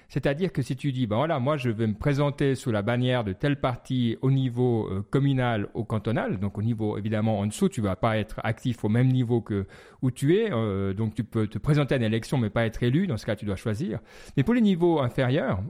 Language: French